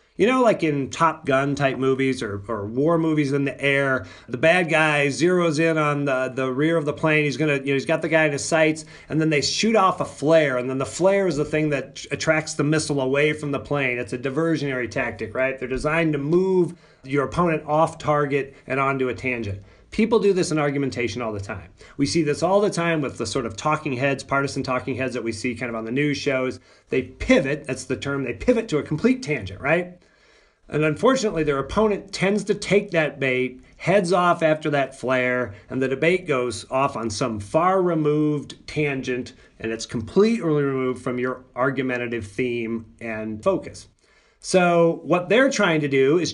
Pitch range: 130-160 Hz